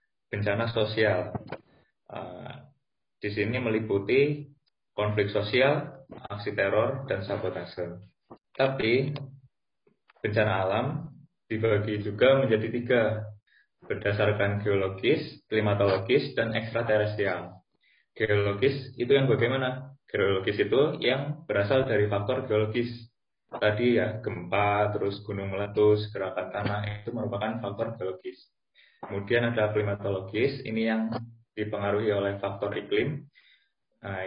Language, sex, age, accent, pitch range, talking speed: Indonesian, male, 20-39, native, 100-120 Hz, 100 wpm